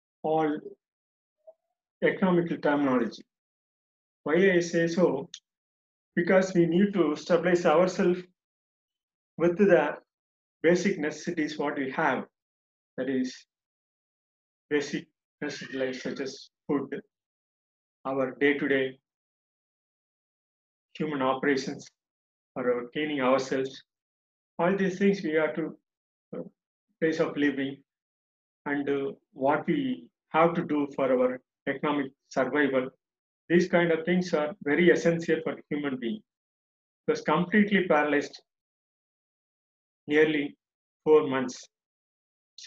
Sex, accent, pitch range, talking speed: male, native, 140-175 Hz, 100 wpm